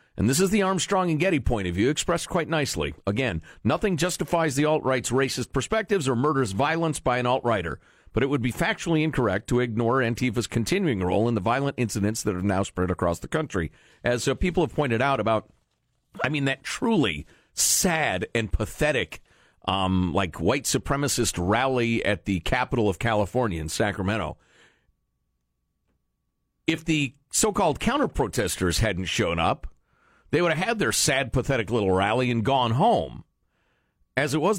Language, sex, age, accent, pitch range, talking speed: English, male, 50-69, American, 100-170 Hz, 165 wpm